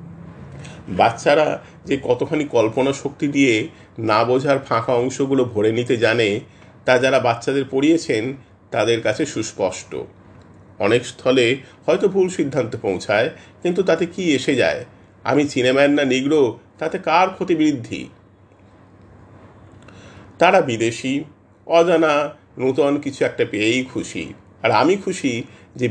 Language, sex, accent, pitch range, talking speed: Hindi, male, native, 105-140 Hz, 95 wpm